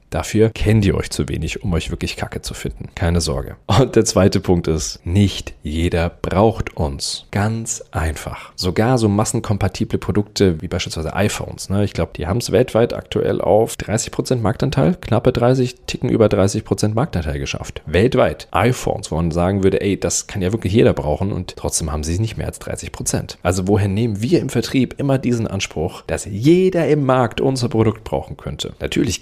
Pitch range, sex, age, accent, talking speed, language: 85-110 Hz, male, 30-49, German, 185 wpm, German